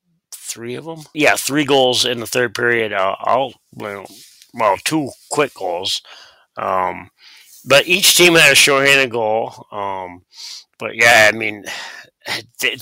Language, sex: English, male